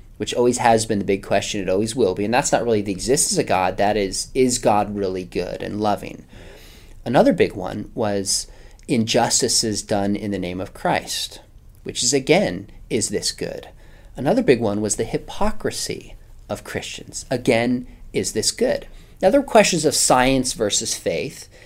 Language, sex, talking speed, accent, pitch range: English, male, 175 wpm, American, 105-135 Hz